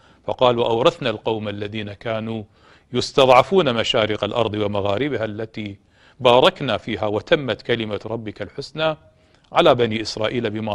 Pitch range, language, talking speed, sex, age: 105-145 Hz, Arabic, 110 wpm, male, 40-59